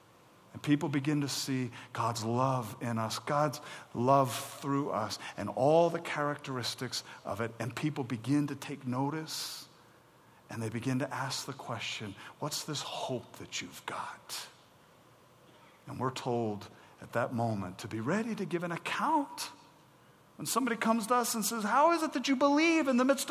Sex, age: male, 50-69